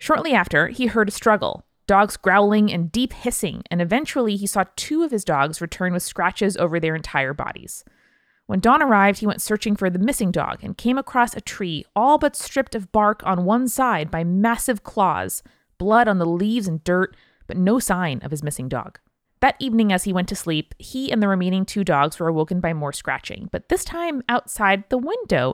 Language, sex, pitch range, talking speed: English, female, 170-230 Hz, 210 wpm